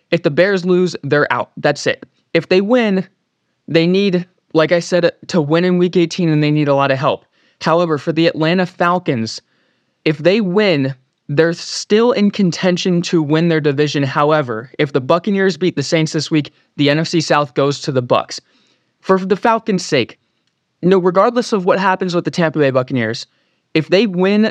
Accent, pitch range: American, 145-180 Hz